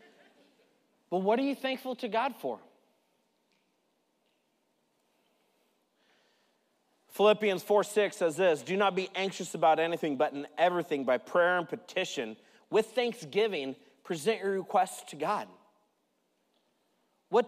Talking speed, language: 115 wpm, English